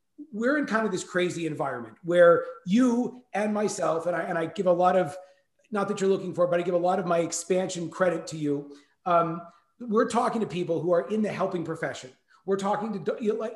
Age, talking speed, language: 30-49, 215 wpm, English